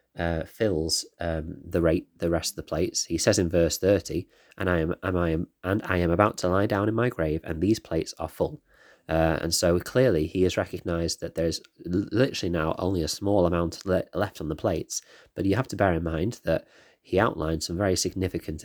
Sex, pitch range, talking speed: male, 80-95 Hz, 230 wpm